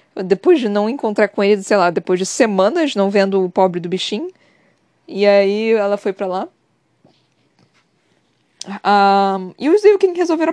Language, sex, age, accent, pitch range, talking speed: Portuguese, female, 20-39, Brazilian, 185-265 Hz, 175 wpm